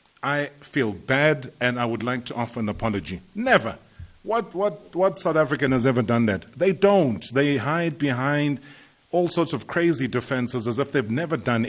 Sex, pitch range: male, 115-145 Hz